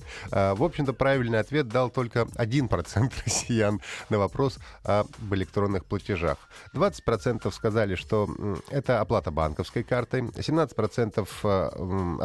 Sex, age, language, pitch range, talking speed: male, 30-49, Russian, 95-135 Hz, 105 wpm